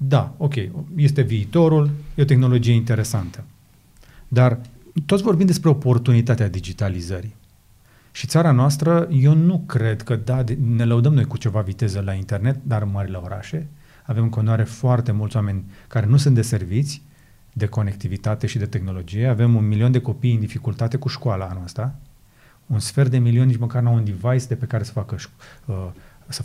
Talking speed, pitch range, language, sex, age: 170 wpm, 110-135 Hz, Romanian, male, 30-49